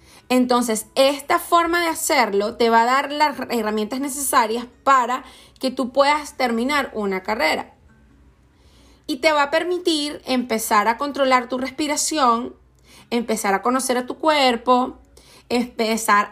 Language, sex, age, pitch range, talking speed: Spanish, female, 30-49, 225-280 Hz, 130 wpm